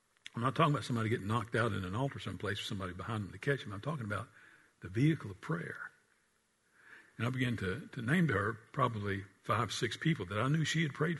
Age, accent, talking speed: 60-79, American, 235 wpm